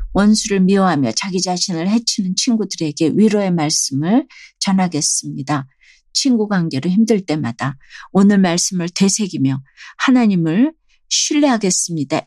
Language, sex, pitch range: Korean, female, 155-195 Hz